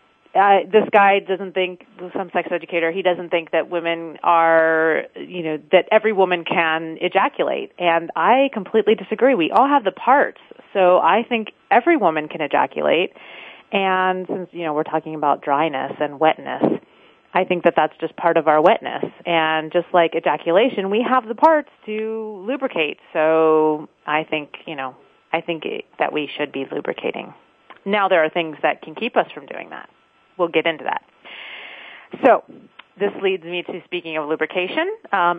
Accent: American